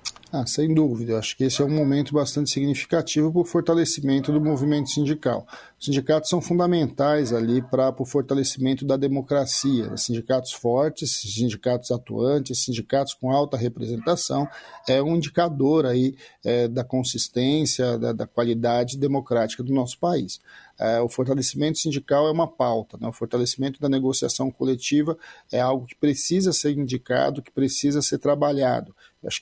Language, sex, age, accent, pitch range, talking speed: Portuguese, male, 50-69, Brazilian, 120-145 Hz, 145 wpm